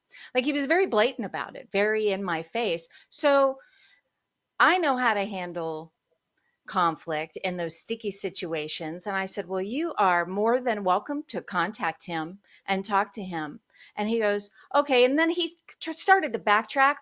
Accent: American